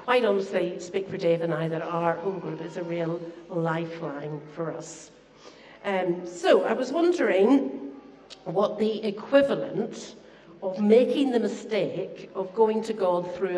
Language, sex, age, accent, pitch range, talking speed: English, female, 60-79, British, 165-210 Hz, 150 wpm